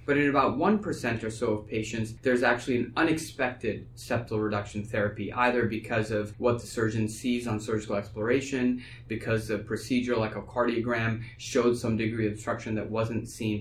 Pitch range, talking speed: 110-125 Hz, 170 wpm